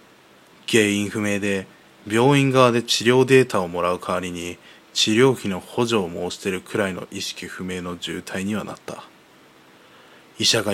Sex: male